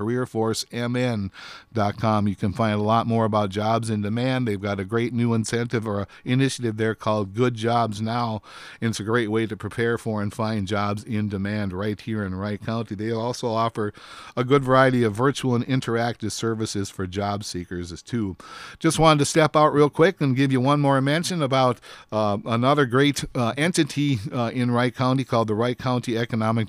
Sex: male